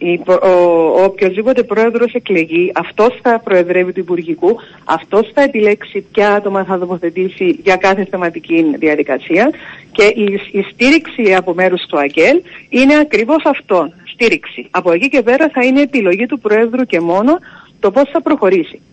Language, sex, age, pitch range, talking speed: Greek, female, 50-69, 180-245 Hz, 145 wpm